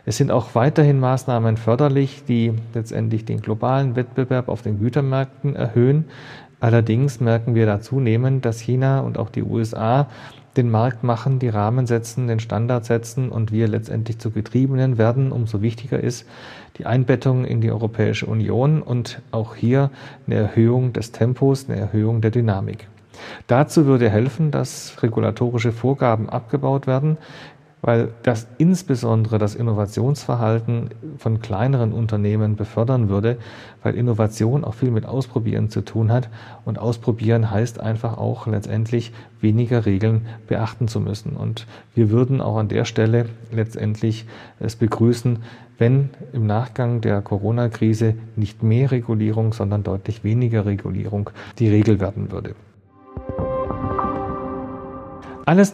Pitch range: 110-130 Hz